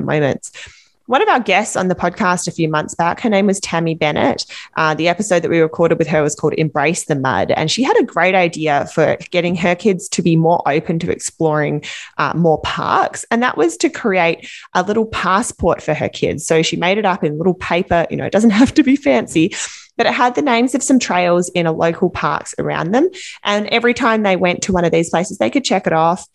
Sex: female